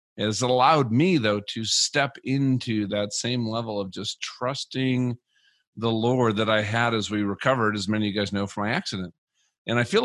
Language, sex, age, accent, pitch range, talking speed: English, male, 50-69, American, 105-135 Hz, 195 wpm